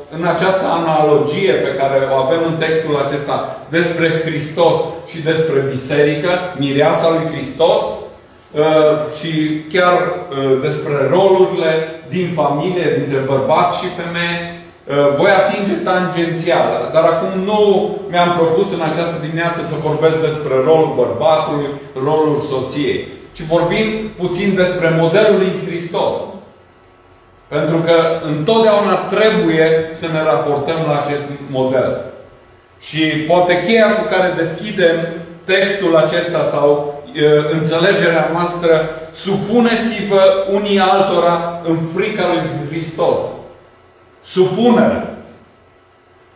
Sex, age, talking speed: male, 30-49, 105 wpm